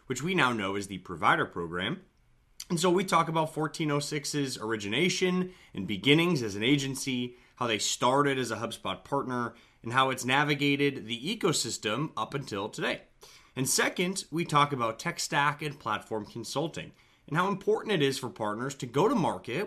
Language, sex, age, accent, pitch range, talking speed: English, male, 30-49, American, 120-155 Hz, 175 wpm